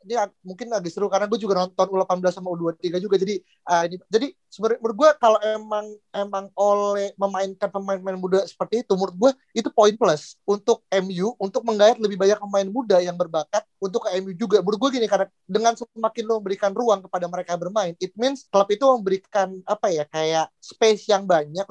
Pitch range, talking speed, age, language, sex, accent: 175-210 Hz, 190 wpm, 30-49, Indonesian, male, native